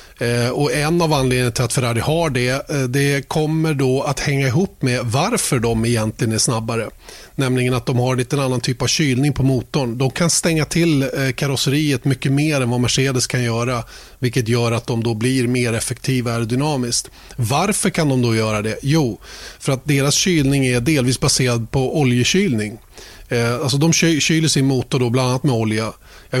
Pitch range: 120-140 Hz